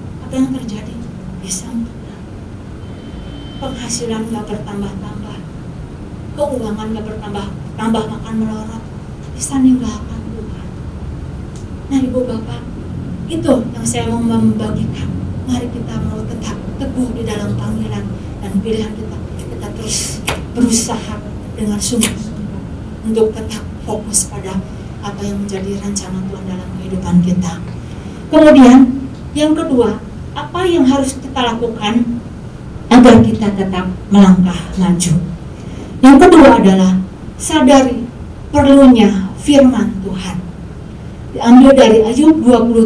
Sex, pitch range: female, 185-245 Hz